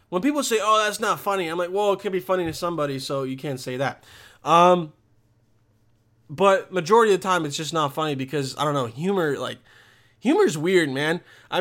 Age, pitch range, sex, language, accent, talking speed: 20-39, 140-210 Hz, male, English, American, 210 wpm